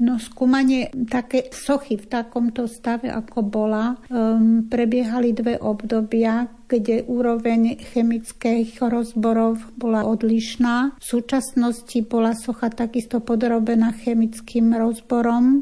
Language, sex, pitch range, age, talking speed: Slovak, female, 225-240 Hz, 60-79, 105 wpm